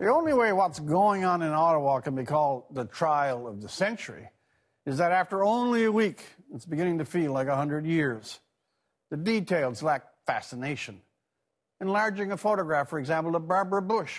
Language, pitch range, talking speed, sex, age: English, 150-195 Hz, 175 wpm, male, 60-79